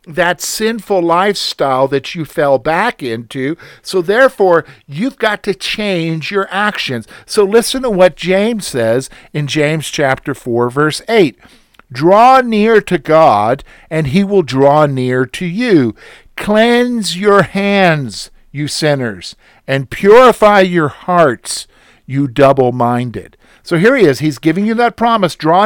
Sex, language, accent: male, English, American